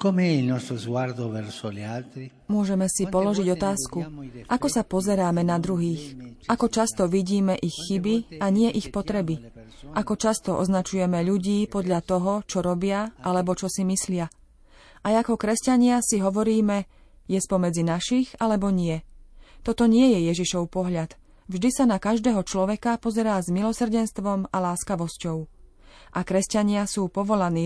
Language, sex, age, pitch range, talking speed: Slovak, female, 30-49, 180-215 Hz, 130 wpm